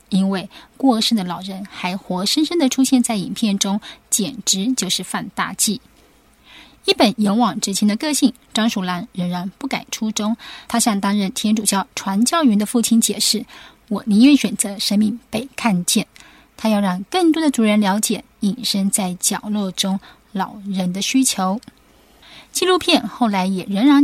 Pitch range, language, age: 195-250 Hz, Chinese, 20-39